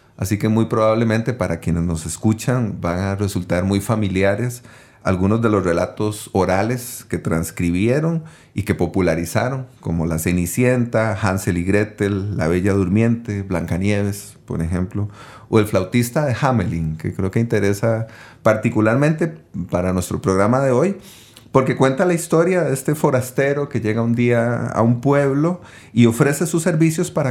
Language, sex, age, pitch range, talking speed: English, male, 40-59, 100-125 Hz, 150 wpm